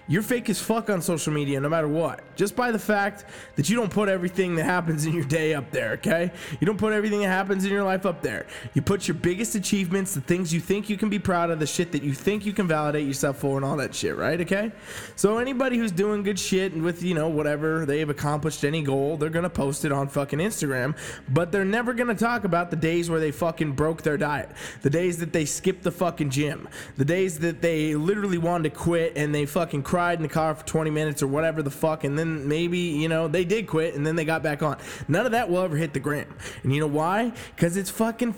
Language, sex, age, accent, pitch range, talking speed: English, male, 20-39, American, 150-195 Hz, 260 wpm